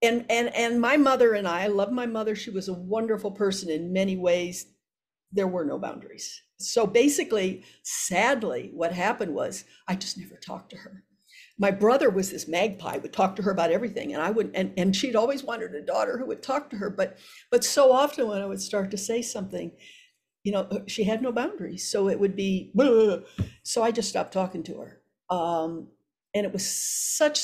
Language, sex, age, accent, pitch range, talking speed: English, female, 60-79, American, 185-240 Hz, 210 wpm